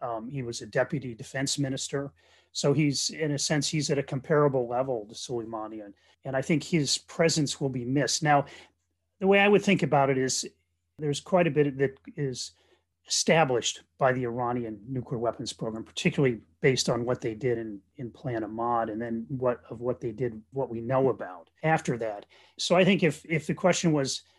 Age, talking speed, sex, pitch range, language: 30-49, 195 wpm, male, 115-150 Hz, English